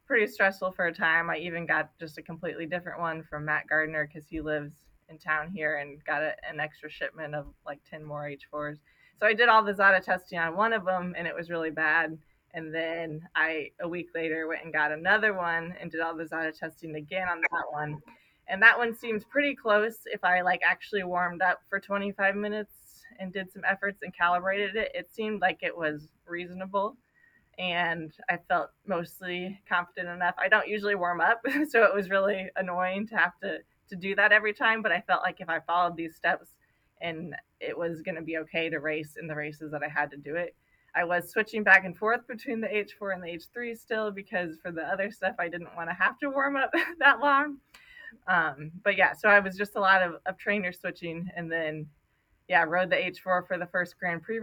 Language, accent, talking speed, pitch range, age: English, American, 220 wpm, 160-205 Hz, 20-39